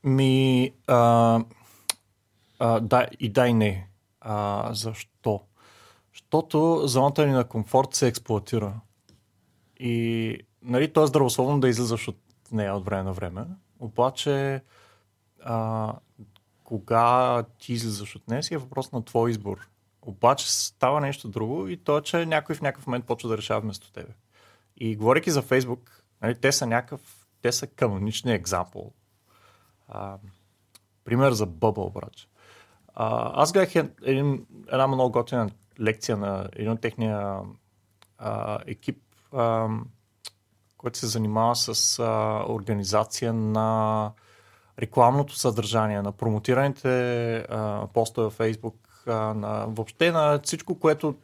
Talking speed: 125 wpm